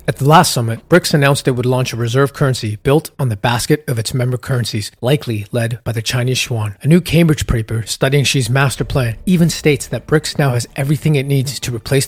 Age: 30-49